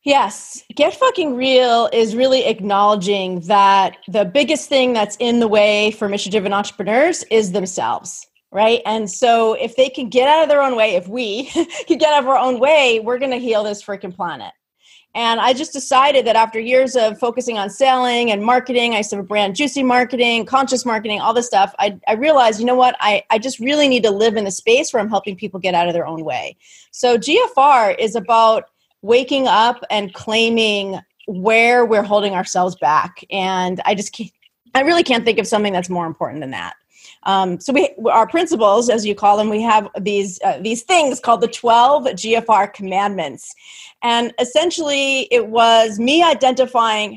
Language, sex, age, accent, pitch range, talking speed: English, female, 30-49, American, 200-255 Hz, 195 wpm